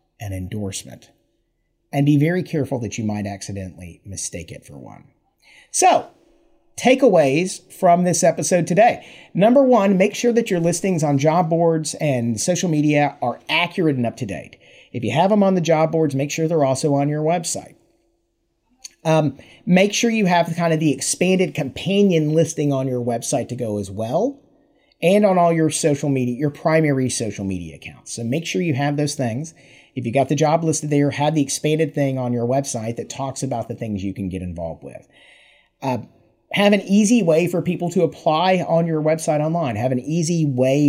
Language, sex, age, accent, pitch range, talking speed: English, male, 40-59, American, 125-175 Hz, 190 wpm